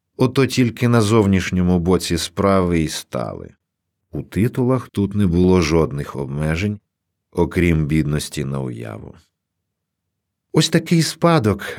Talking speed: 110 wpm